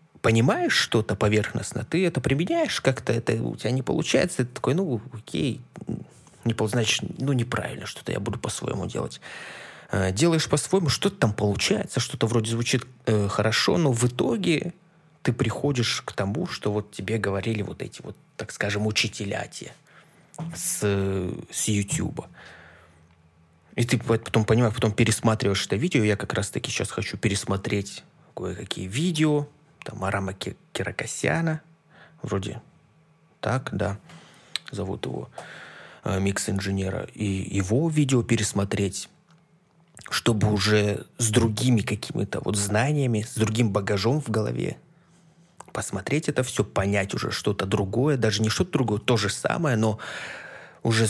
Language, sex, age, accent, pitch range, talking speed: Russian, male, 20-39, native, 105-145 Hz, 130 wpm